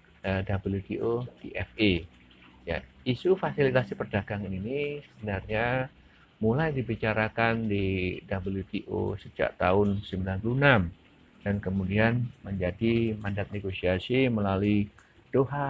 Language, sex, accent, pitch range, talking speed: Indonesian, male, native, 100-120 Hz, 80 wpm